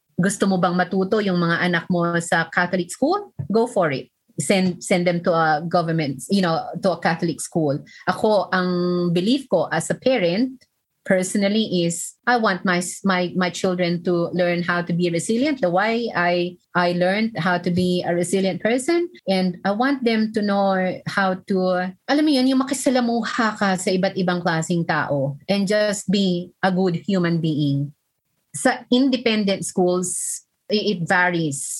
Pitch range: 165-195 Hz